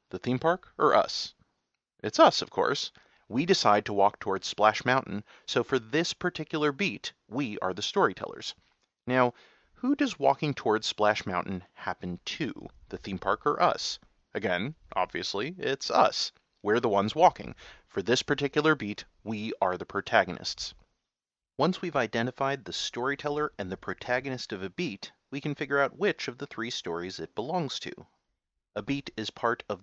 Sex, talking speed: male, 165 wpm